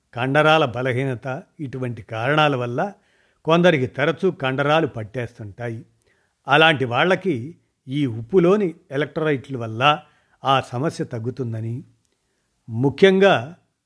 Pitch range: 125-165 Hz